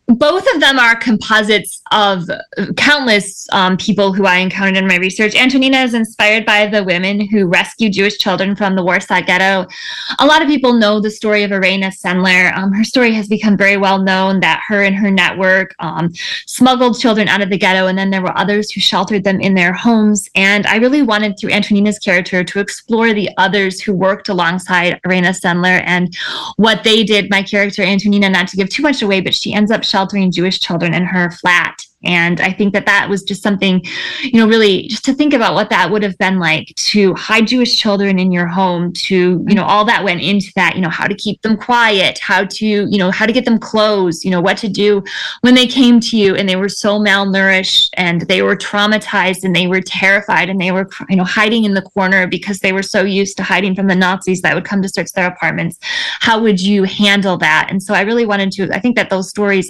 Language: English